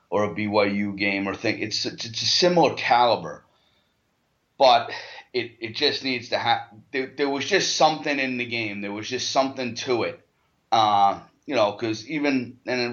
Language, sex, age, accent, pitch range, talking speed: English, male, 30-49, American, 100-125 Hz, 180 wpm